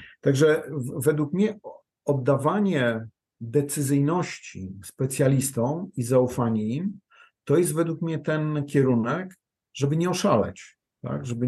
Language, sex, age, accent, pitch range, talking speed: Polish, male, 50-69, native, 115-145 Hz, 105 wpm